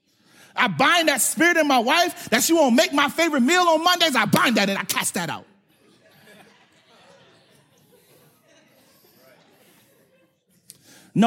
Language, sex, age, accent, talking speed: English, male, 40-59, American, 135 wpm